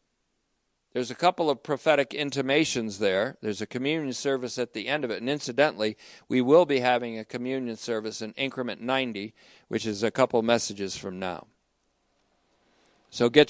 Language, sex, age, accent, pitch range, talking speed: English, male, 50-69, American, 125-200 Hz, 165 wpm